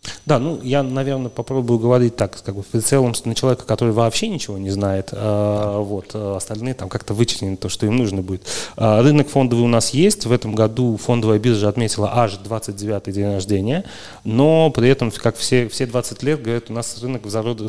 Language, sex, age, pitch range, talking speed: Russian, male, 30-49, 105-125 Hz, 200 wpm